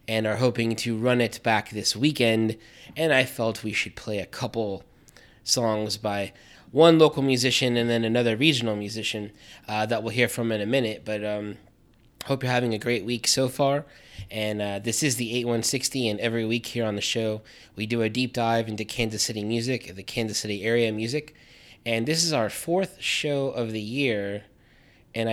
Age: 20-39